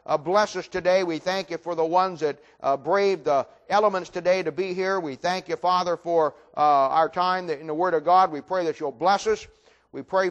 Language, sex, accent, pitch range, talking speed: English, male, American, 155-200 Hz, 235 wpm